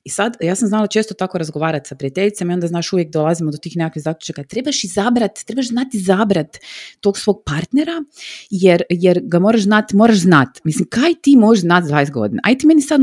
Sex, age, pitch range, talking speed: female, 30-49, 140-195 Hz, 210 wpm